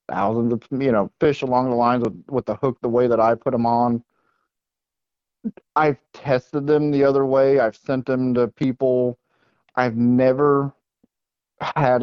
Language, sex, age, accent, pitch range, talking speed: English, male, 40-59, American, 120-145 Hz, 165 wpm